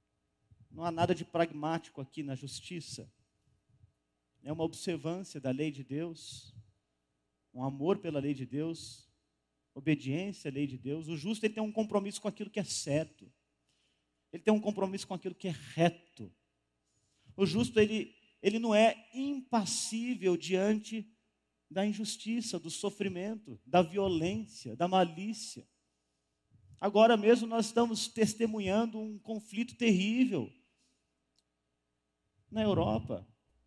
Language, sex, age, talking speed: Portuguese, male, 40-59, 125 wpm